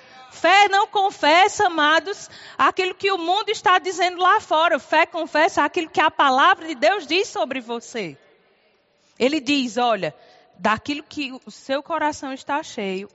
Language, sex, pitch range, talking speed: Portuguese, female, 235-340 Hz, 150 wpm